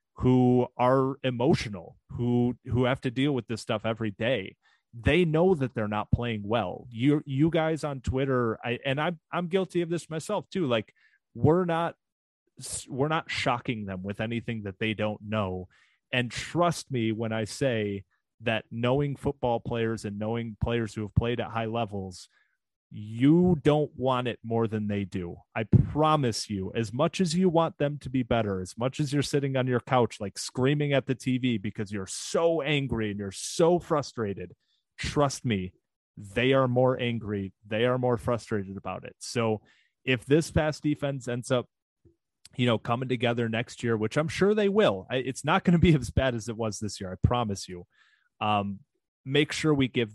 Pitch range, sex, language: 110-140 Hz, male, English